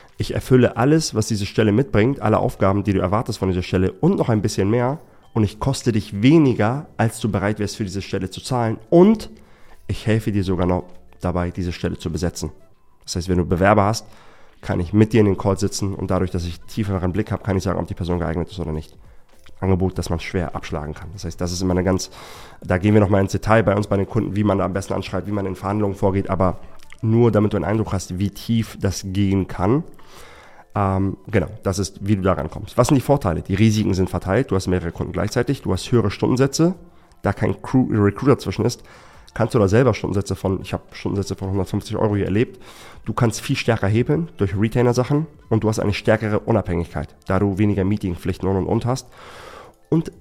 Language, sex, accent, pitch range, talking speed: German, male, German, 95-110 Hz, 225 wpm